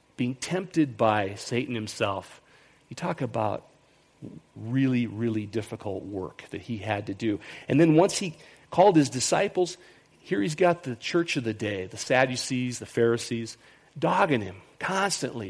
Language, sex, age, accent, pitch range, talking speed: English, male, 40-59, American, 110-150 Hz, 150 wpm